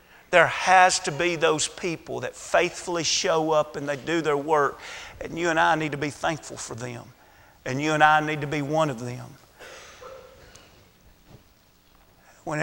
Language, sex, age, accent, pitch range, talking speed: English, male, 40-59, American, 145-190 Hz, 170 wpm